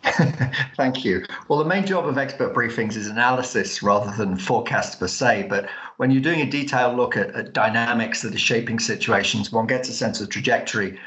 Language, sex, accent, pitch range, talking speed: English, male, British, 105-130 Hz, 195 wpm